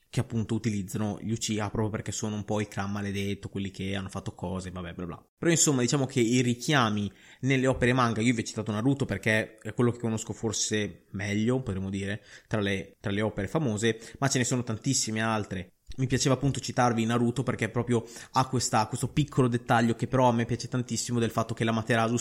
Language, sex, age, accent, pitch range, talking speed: Italian, male, 20-39, native, 100-120 Hz, 215 wpm